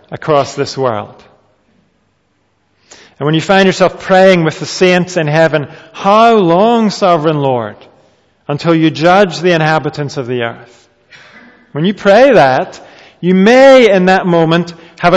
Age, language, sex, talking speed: 40-59, English, male, 140 wpm